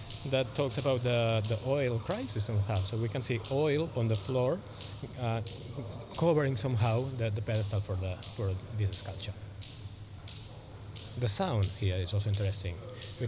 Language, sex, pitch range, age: English, male, 100-115 Hz, 20-39